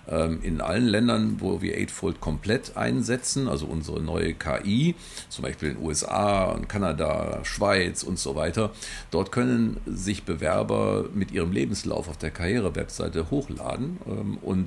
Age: 50-69